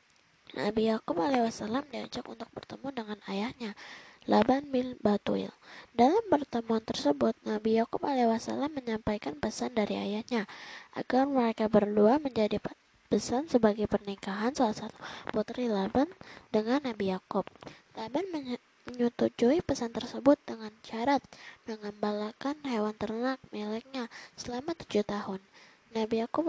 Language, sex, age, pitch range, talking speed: Indonesian, female, 20-39, 215-260 Hz, 115 wpm